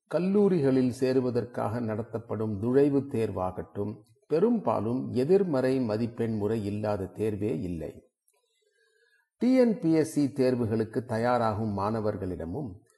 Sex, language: male, Tamil